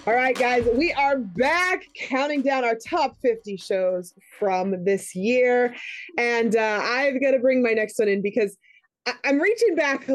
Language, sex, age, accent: English, female, 30-49, American